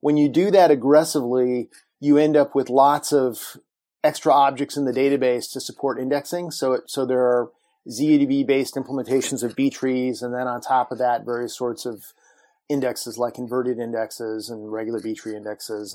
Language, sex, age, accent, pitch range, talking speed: English, male, 30-49, American, 120-150 Hz, 170 wpm